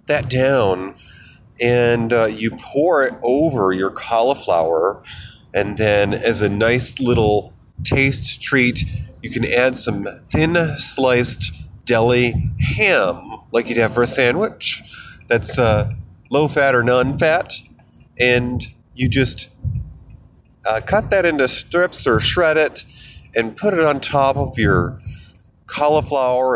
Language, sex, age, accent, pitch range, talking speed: English, male, 30-49, American, 110-140 Hz, 130 wpm